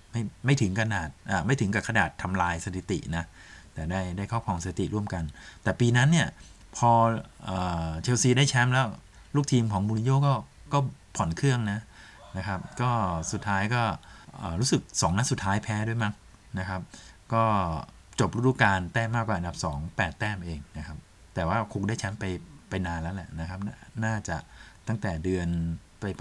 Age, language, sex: 20-39, Thai, male